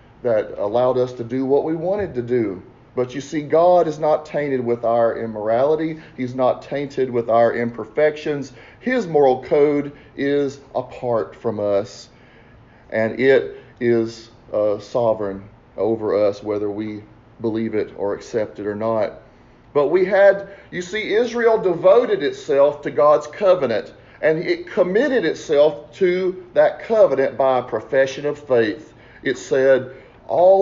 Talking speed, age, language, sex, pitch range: 145 wpm, 40-59, English, male, 115-155 Hz